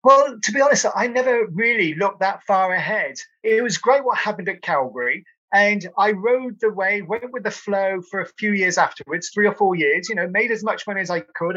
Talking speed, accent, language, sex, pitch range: 235 wpm, British, English, male, 175-220 Hz